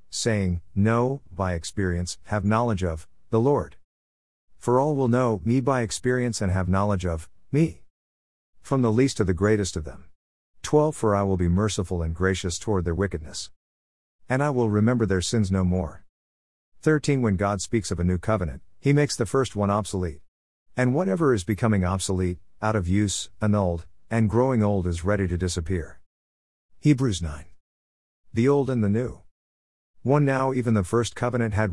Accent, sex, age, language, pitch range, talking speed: American, male, 50-69, English, 90-115 Hz, 175 wpm